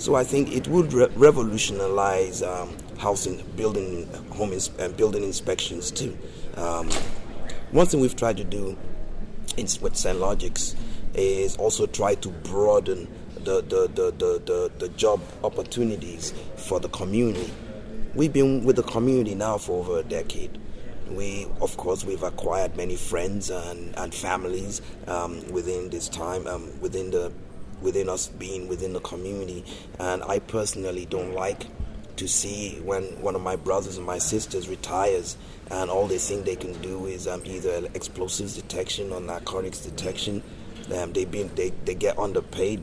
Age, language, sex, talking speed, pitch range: 30-49, English, male, 155 wpm, 90-130 Hz